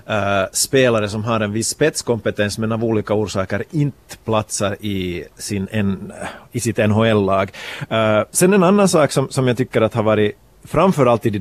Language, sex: Swedish, male